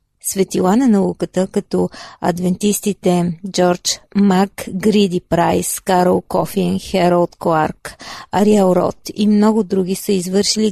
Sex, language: female, Bulgarian